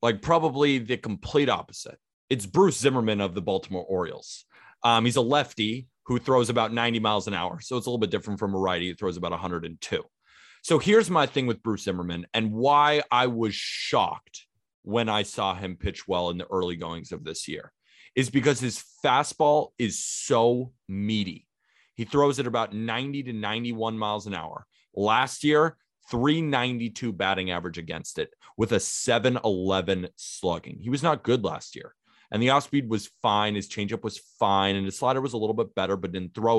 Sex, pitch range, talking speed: male, 100-140 Hz, 185 wpm